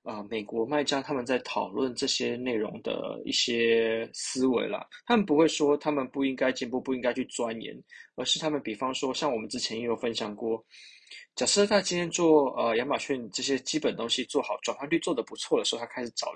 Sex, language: male, Chinese